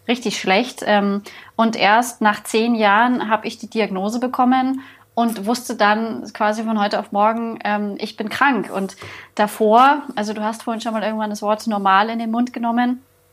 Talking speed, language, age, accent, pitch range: 175 wpm, German, 20-39, German, 210-240 Hz